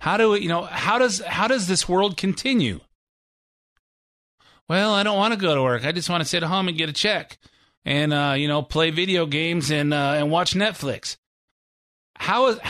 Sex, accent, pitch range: male, American, 115-160 Hz